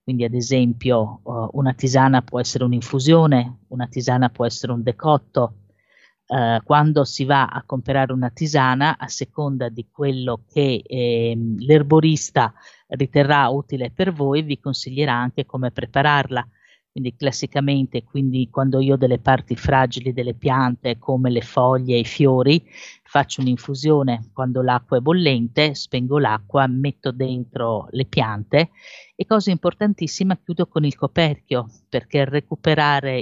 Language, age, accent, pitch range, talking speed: Italian, 30-49, native, 125-145 Hz, 135 wpm